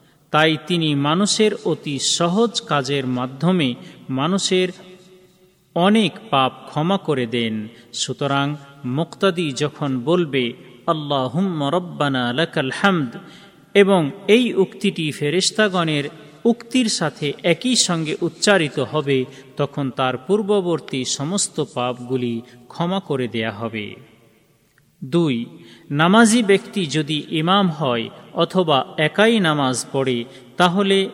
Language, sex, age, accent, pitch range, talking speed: Bengali, male, 40-59, native, 130-185 Hz, 95 wpm